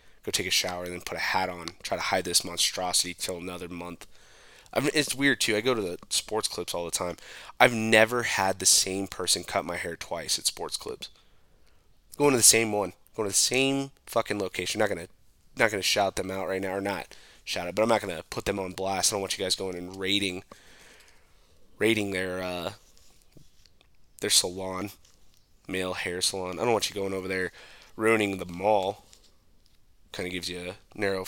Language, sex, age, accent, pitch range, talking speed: English, male, 20-39, American, 90-110 Hz, 210 wpm